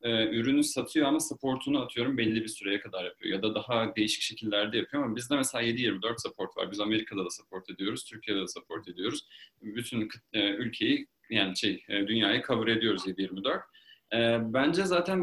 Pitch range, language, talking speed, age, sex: 110-165 Hz, Turkish, 160 wpm, 30-49, male